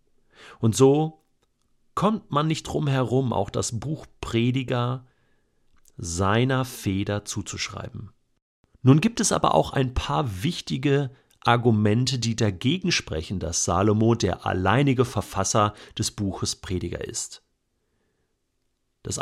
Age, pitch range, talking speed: 40-59, 95-125 Hz, 110 wpm